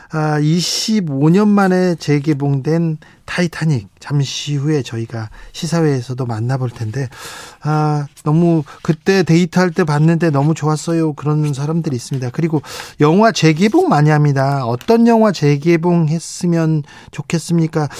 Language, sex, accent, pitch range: Korean, male, native, 135-170 Hz